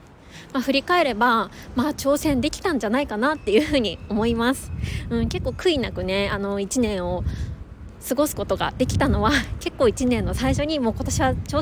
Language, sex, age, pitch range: Japanese, female, 20-39, 215-280 Hz